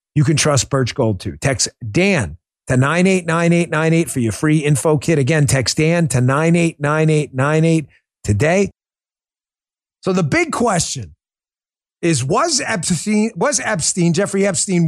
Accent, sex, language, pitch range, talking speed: American, male, English, 155-225 Hz, 130 wpm